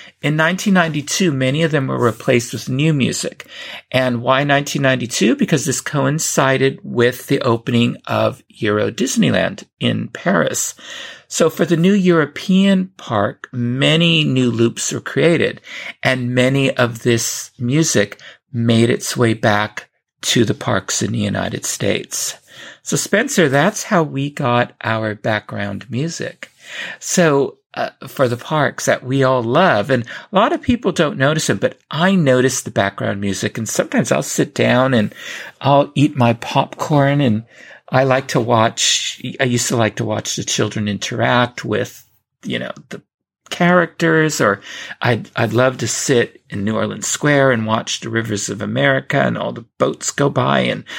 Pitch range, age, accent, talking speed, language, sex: 120-160 Hz, 50-69, American, 160 wpm, English, male